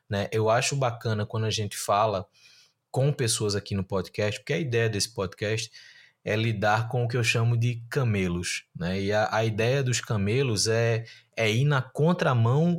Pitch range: 115-155 Hz